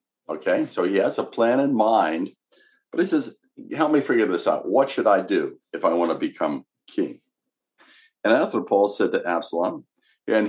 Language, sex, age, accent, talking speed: English, male, 60-79, American, 185 wpm